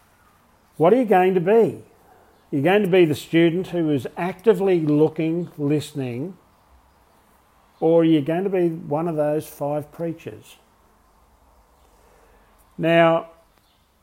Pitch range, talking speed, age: 130-175 Hz, 120 wpm, 50-69